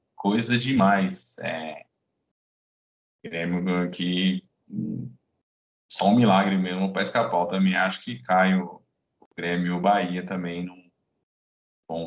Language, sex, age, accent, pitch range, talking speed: Portuguese, male, 20-39, Brazilian, 85-105 Hz, 115 wpm